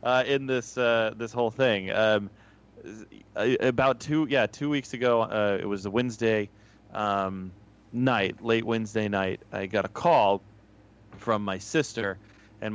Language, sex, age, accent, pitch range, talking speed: English, male, 20-39, American, 100-120 Hz, 150 wpm